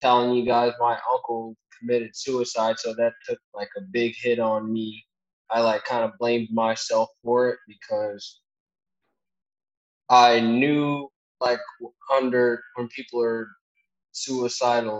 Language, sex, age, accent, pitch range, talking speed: English, male, 20-39, American, 105-125 Hz, 130 wpm